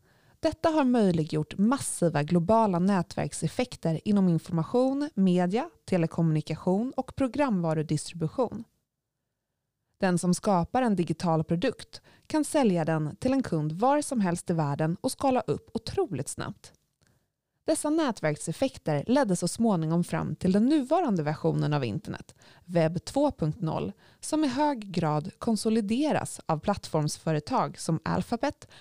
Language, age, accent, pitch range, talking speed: Swedish, 20-39, native, 165-250 Hz, 120 wpm